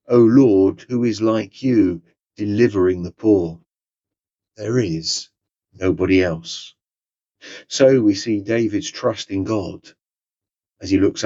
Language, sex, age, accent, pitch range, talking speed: English, male, 40-59, British, 90-115 Hz, 125 wpm